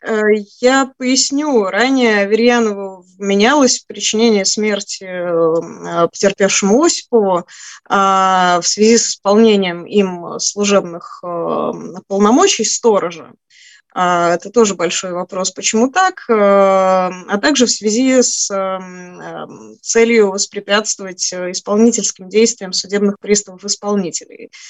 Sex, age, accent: female, 20-39, native